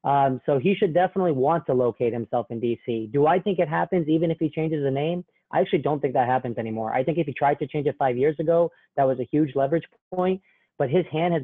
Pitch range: 130-160 Hz